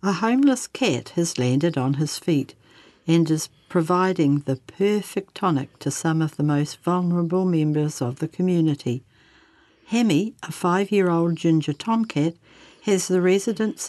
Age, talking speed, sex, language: 60-79, 140 wpm, female, English